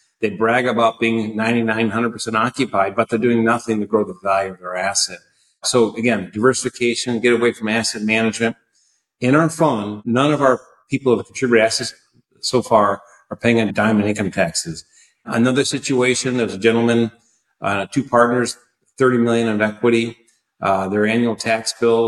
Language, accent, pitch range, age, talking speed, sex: English, American, 110-125 Hz, 50-69, 170 wpm, male